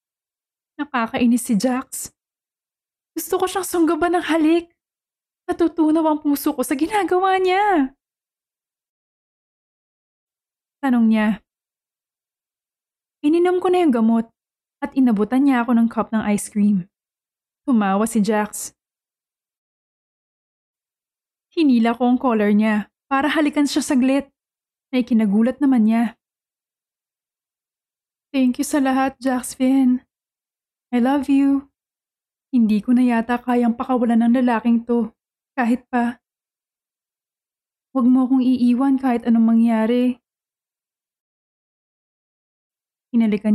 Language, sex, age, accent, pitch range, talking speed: Filipino, female, 20-39, native, 225-280 Hz, 105 wpm